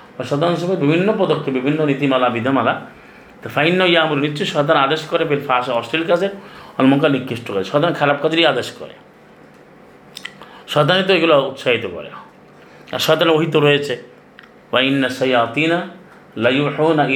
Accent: native